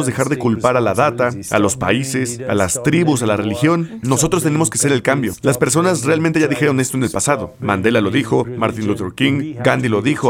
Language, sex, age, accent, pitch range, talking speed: English, male, 40-59, Mexican, 120-155 Hz, 225 wpm